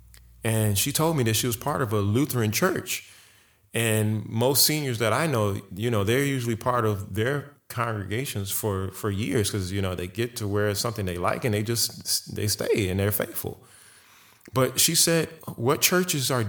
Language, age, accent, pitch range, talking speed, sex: English, 30-49, American, 100-125 Hz, 195 wpm, male